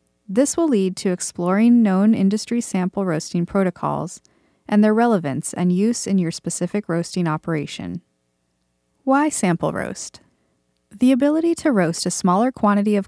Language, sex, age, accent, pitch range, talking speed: English, female, 30-49, American, 165-215 Hz, 140 wpm